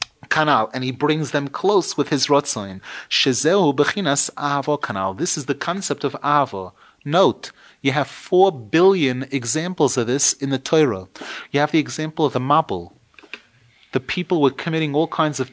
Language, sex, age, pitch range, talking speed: English, male, 30-49, 145-205 Hz, 160 wpm